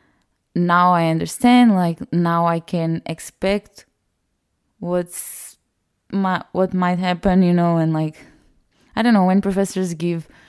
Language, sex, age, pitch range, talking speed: English, female, 20-39, 165-190 Hz, 130 wpm